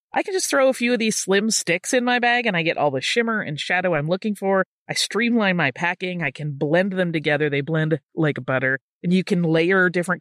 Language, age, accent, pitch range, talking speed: English, 30-49, American, 165-220 Hz, 245 wpm